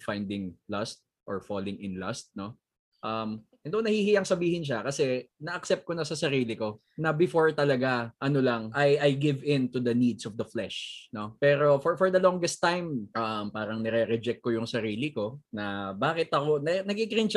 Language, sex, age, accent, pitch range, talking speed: Filipino, male, 20-39, native, 110-165 Hz, 195 wpm